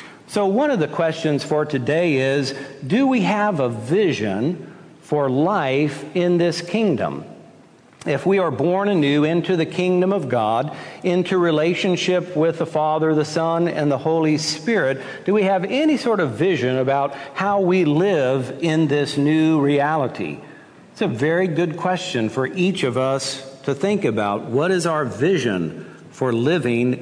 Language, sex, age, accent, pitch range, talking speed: English, male, 60-79, American, 140-175 Hz, 160 wpm